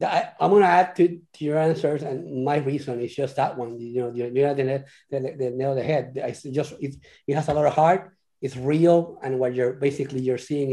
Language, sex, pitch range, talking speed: English, male, 125-150 Hz, 240 wpm